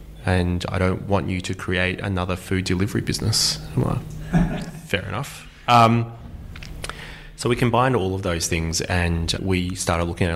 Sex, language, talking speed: male, English, 155 wpm